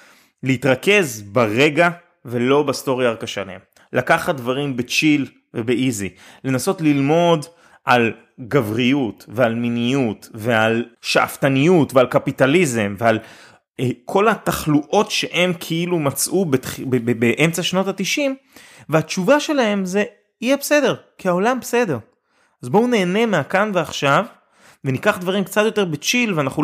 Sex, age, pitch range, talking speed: male, 30-49, 130-180 Hz, 120 wpm